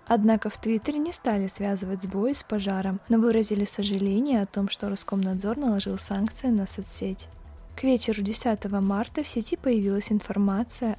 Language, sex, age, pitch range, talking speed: Russian, female, 20-39, 200-230 Hz, 155 wpm